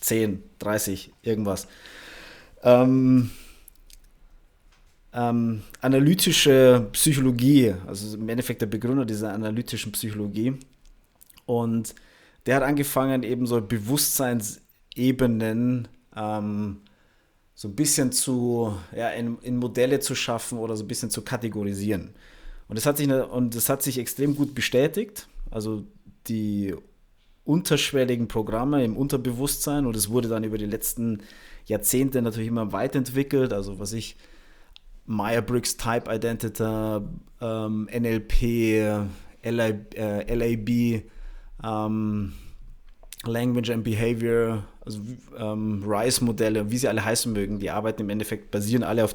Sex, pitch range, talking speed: male, 105-125 Hz, 105 wpm